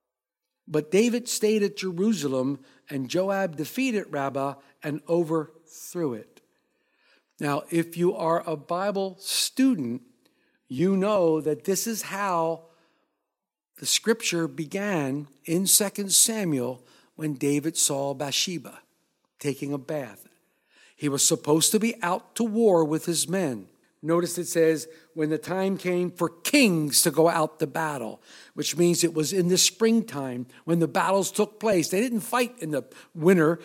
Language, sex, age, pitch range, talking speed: English, male, 50-69, 155-200 Hz, 145 wpm